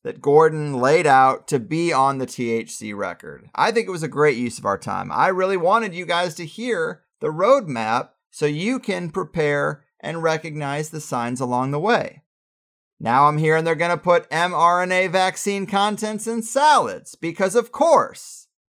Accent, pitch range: American, 150-235 Hz